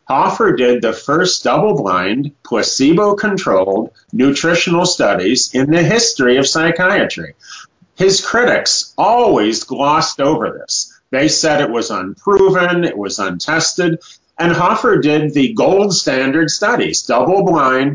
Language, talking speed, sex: English, 115 wpm, male